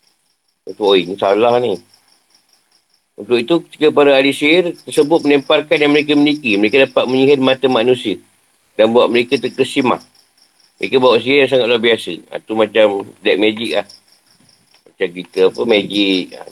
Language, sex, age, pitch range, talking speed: Malay, male, 50-69, 110-135 Hz, 150 wpm